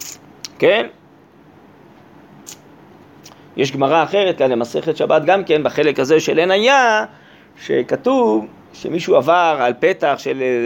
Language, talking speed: Hebrew, 105 wpm